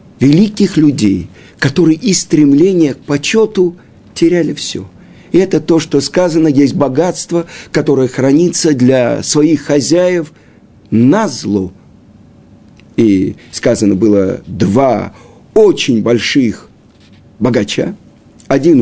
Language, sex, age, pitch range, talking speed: Russian, male, 50-69, 135-170 Hz, 100 wpm